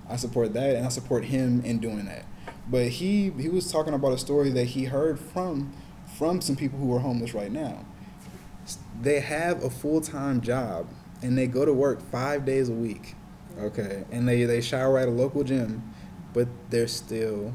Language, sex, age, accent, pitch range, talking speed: English, male, 20-39, American, 115-135 Hz, 190 wpm